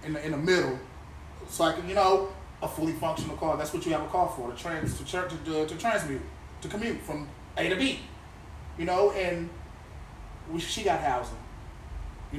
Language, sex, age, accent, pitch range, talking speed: English, male, 30-49, American, 150-200 Hz, 210 wpm